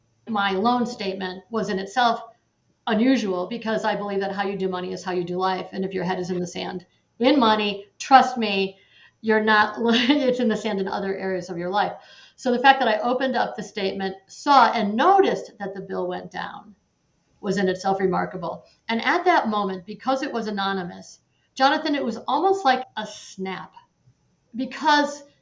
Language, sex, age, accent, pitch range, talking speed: English, female, 50-69, American, 190-255 Hz, 190 wpm